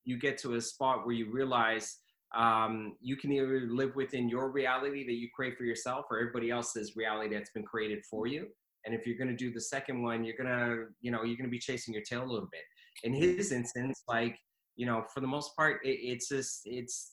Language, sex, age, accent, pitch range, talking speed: English, male, 20-39, American, 110-125 Hz, 230 wpm